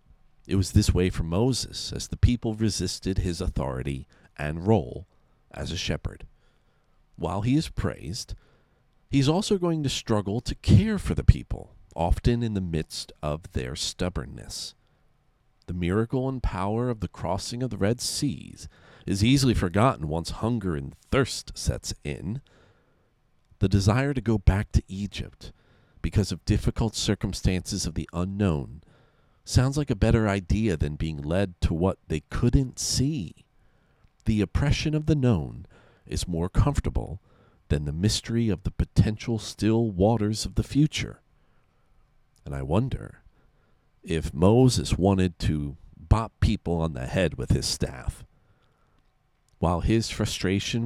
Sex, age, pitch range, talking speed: male, 50-69, 85-115 Hz, 145 wpm